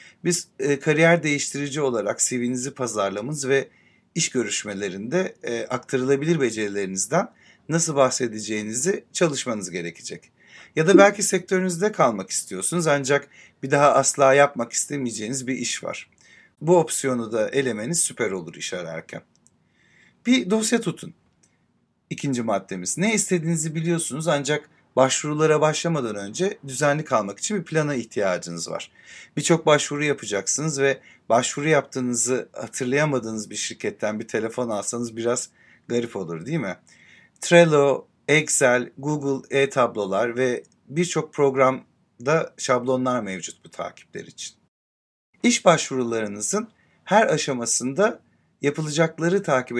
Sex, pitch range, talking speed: male, 120-160 Hz, 115 wpm